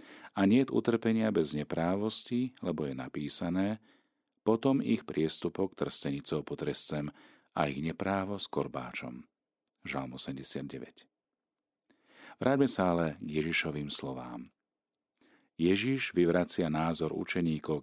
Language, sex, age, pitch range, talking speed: Slovak, male, 50-69, 75-95 Hz, 100 wpm